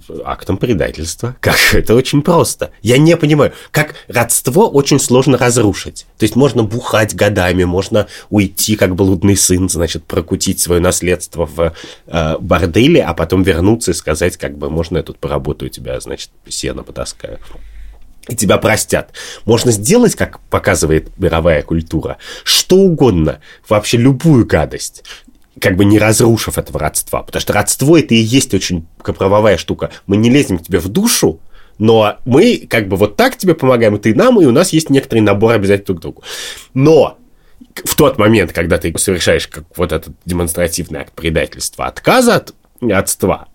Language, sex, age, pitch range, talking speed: Russian, male, 30-49, 85-120 Hz, 165 wpm